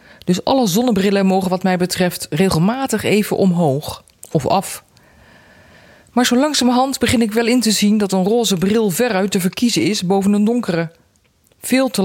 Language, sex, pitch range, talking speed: Dutch, female, 170-220 Hz, 170 wpm